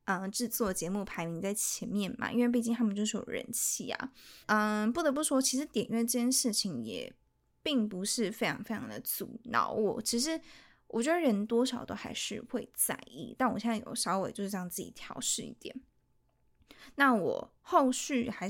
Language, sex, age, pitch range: Chinese, female, 20-39, 210-250 Hz